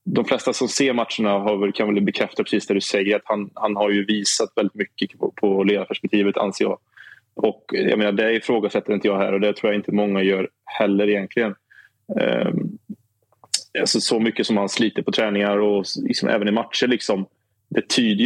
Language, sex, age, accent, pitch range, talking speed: Swedish, male, 20-39, Norwegian, 100-115 Hz, 200 wpm